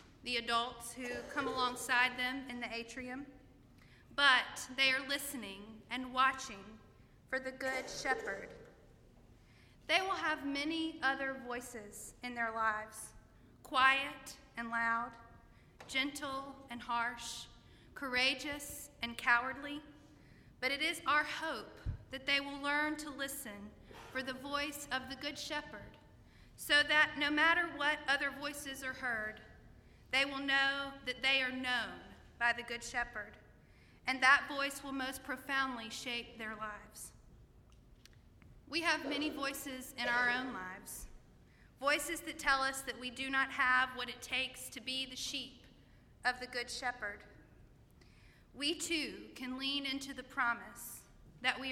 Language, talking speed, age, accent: English, 140 wpm, 40-59, American